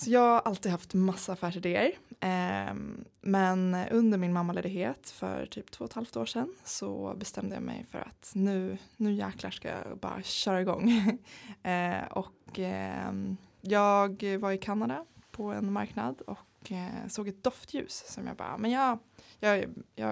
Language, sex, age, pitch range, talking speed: English, female, 20-39, 185-220 Hz, 165 wpm